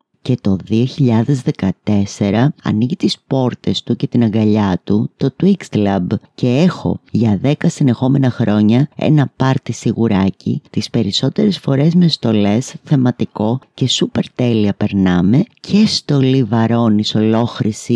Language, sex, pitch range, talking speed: Greek, female, 105-145 Hz, 125 wpm